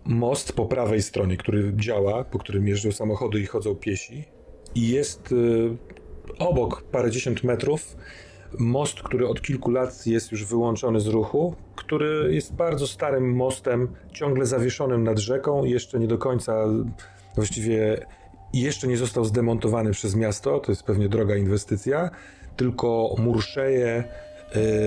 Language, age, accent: Polish, 30-49, native